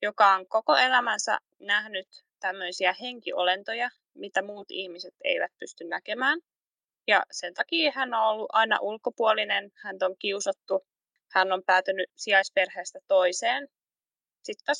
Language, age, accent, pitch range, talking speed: Finnish, 20-39, native, 190-285 Hz, 120 wpm